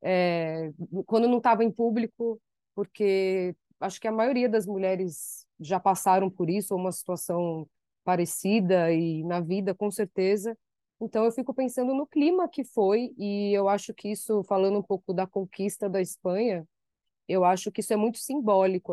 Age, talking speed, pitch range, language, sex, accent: 20-39, 170 wpm, 190-240 Hz, Portuguese, female, Brazilian